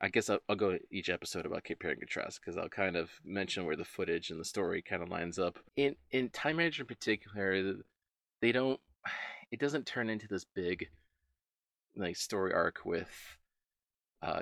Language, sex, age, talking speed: English, male, 30-49, 190 wpm